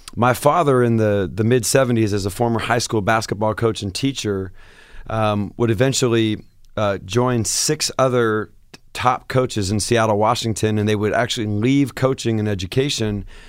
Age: 30-49